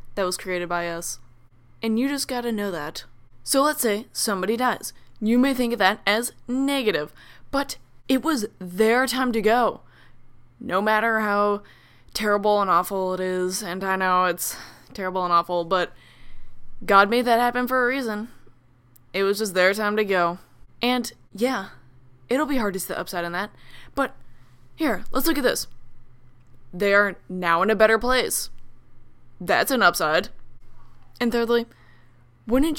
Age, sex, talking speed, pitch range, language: 10-29, female, 165 wpm, 175-240 Hz, English